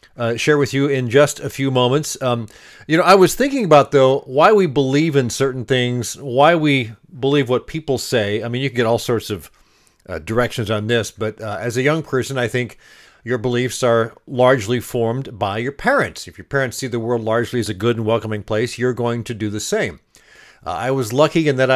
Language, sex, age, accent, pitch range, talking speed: English, male, 50-69, American, 115-140 Hz, 225 wpm